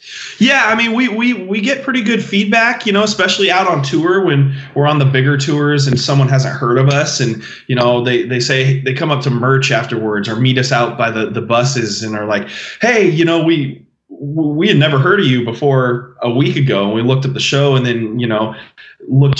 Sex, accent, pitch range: male, American, 120-150 Hz